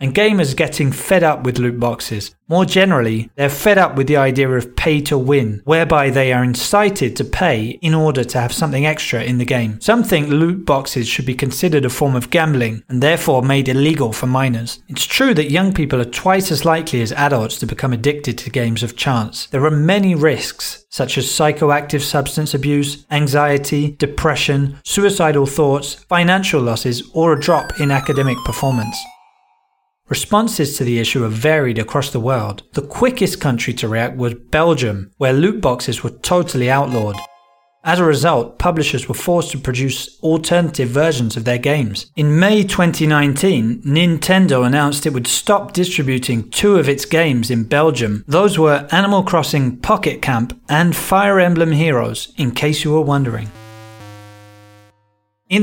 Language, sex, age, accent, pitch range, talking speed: English, male, 30-49, British, 125-165 Hz, 170 wpm